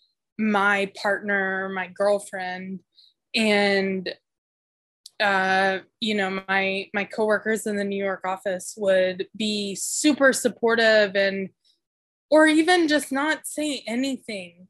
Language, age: English, 20-39